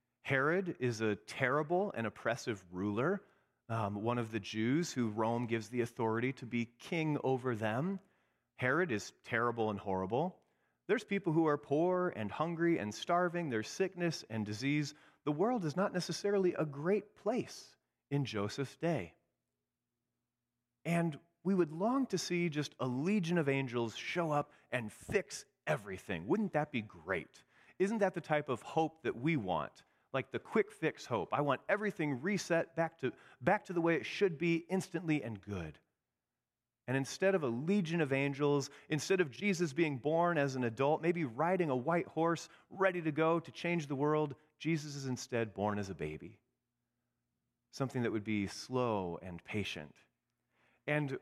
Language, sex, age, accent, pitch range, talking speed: English, male, 30-49, American, 120-170 Hz, 170 wpm